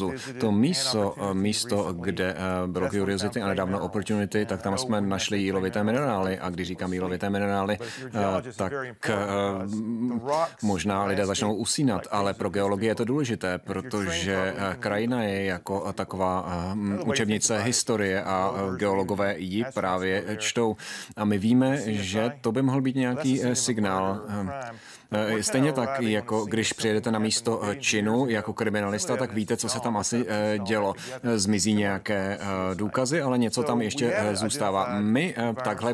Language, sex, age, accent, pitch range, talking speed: Czech, male, 30-49, native, 100-115 Hz, 135 wpm